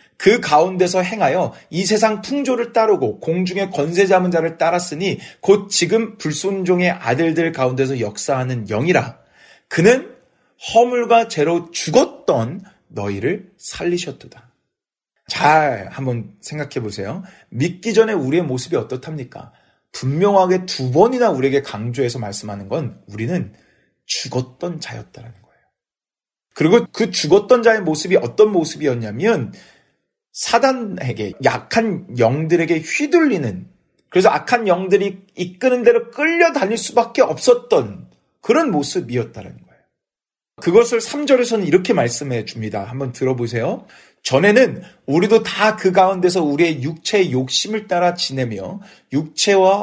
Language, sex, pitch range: Korean, male, 135-210 Hz